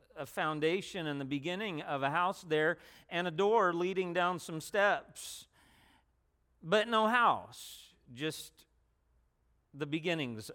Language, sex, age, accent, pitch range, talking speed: English, male, 40-59, American, 150-195 Hz, 125 wpm